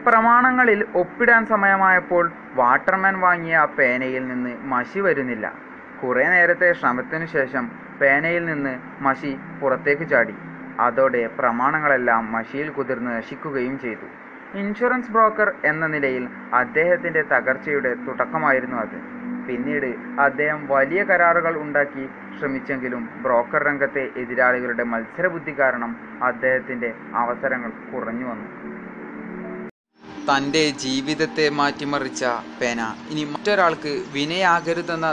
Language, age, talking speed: Malayalam, 30-49, 90 wpm